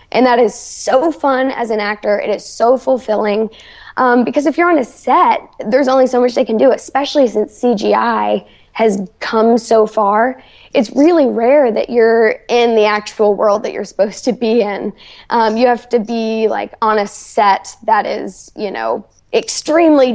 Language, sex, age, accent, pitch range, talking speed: English, female, 10-29, American, 220-265 Hz, 185 wpm